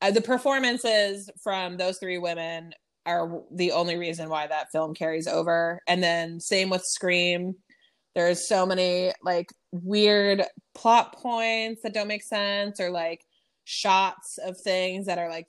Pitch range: 170-220 Hz